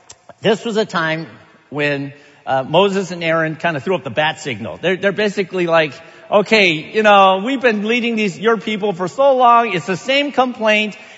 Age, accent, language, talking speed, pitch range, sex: 50-69, American, English, 195 wpm, 170-230 Hz, male